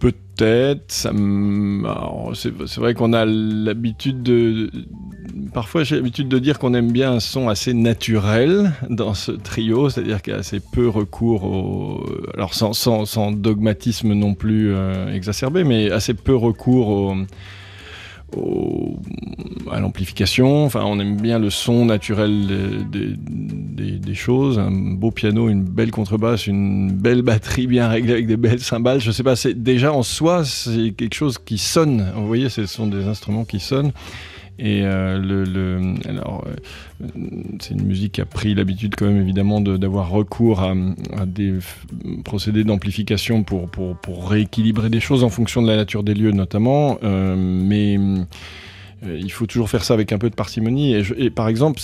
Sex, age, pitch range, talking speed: male, 30-49, 100-120 Hz, 165 wpm